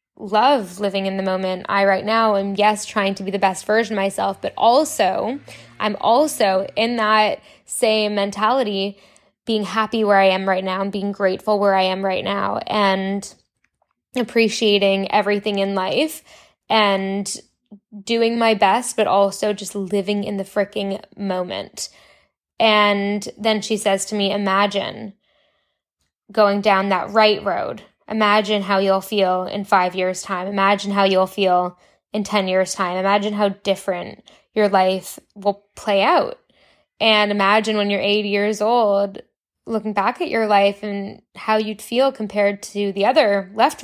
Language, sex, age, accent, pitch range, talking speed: English, female, 10-29, American, 195-220 Hz, 155 wpm